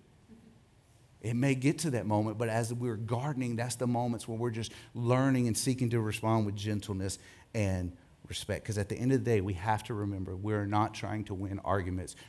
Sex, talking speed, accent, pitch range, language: male, 205 wpm, American, 100-120 Hz, English